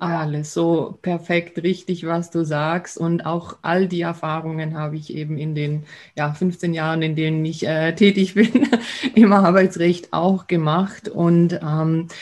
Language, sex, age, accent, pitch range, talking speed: German, female, 30-49, German, 170-195 Hz, 150 wpm